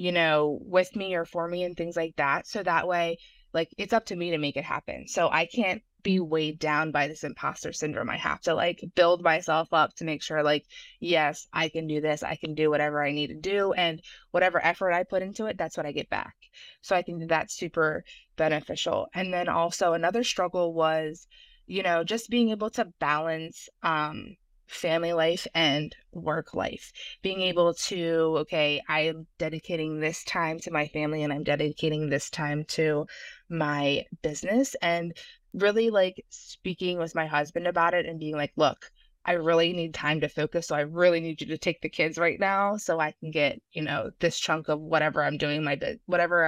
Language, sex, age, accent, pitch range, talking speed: English, female, 20-39, American, 150-175 Hz, 200 wpm